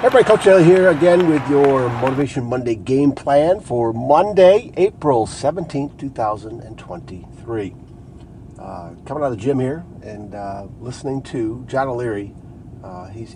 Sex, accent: male, American